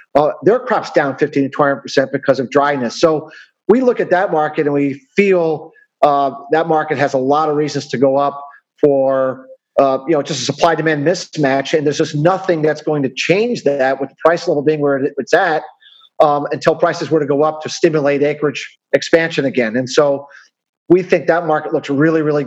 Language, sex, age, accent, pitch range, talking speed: English, male, 40-59, American, 140-160 Hz, 210 wpm